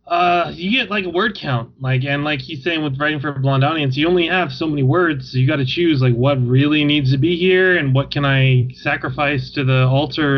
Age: 20-39